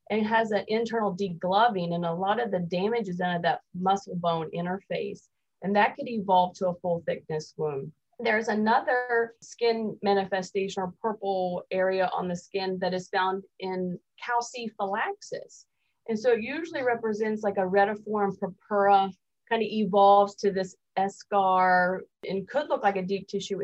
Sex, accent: female, American